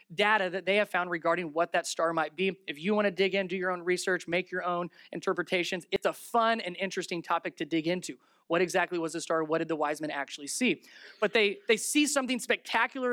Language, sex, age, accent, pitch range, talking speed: English, male, 30-49, American, 180-235 Hz, 240 wpm